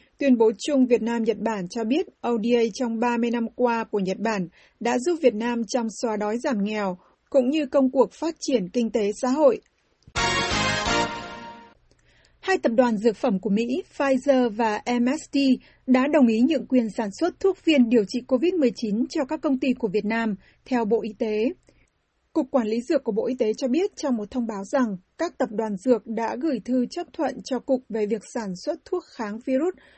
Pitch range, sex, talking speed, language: 230-280 Hz, female, 200 wpm, Vietnamese